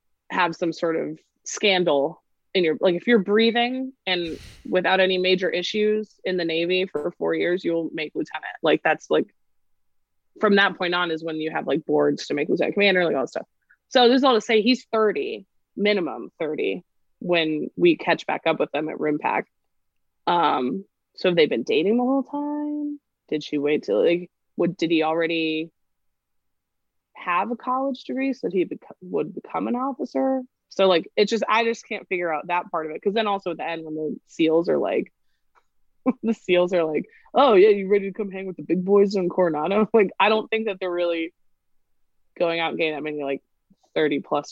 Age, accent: 20-39, American